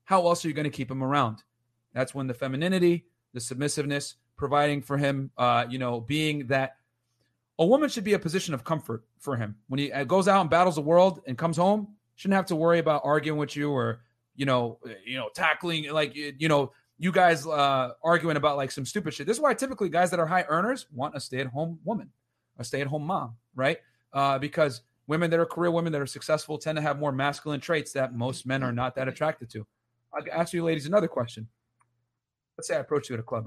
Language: English